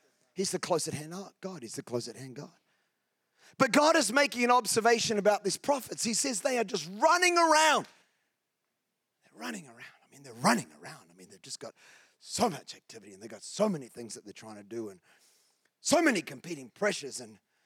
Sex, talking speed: male, 195 wpm